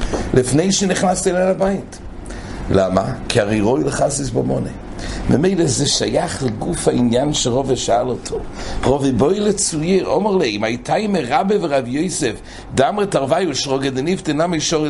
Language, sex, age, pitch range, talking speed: English, male, 60-79, 110-165 Hz, 140 wpm